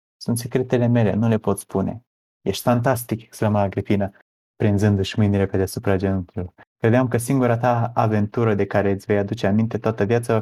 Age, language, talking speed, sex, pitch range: 20-39, Romanian, 175 wpm, male, 95-110 Hz